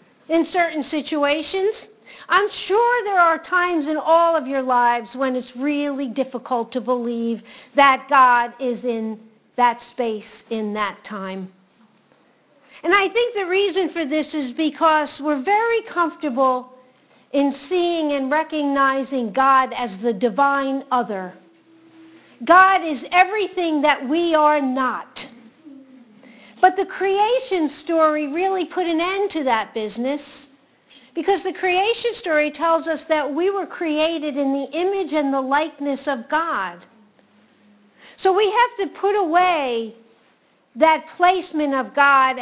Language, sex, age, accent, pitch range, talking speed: English, female, 50-69, American, 255-330 Hz, 135 wpm